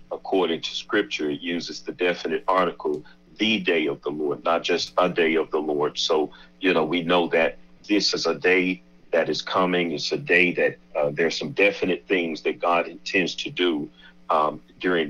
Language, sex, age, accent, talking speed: English, male, 40-59, American, 195 wpm